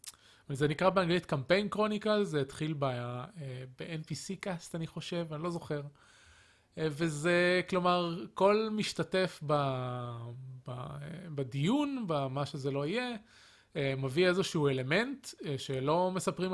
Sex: male